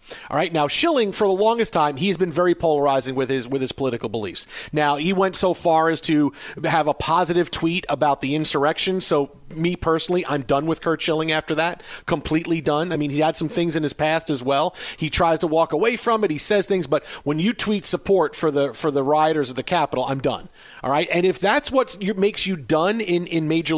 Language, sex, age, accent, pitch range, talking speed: English, male, 40-59, American, 145-185 Hz, 230 wpm